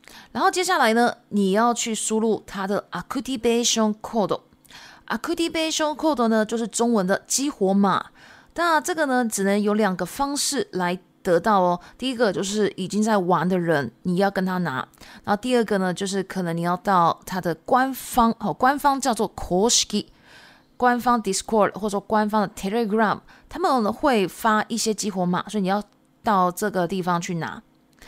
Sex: female